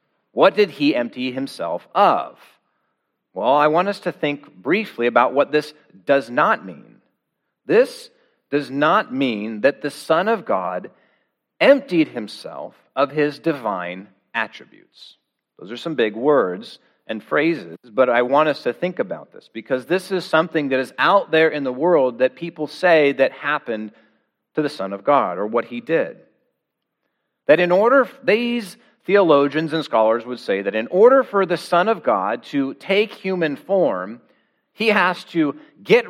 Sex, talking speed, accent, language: male, 165 wpm, American, English